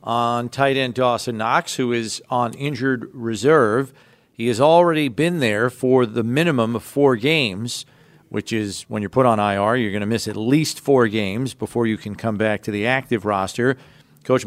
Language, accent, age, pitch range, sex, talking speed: English, American, 40-59, 115-135 Hz, male, 185 wpm